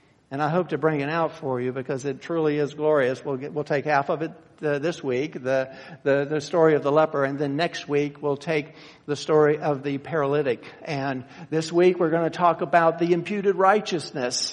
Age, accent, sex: 50-69, American, male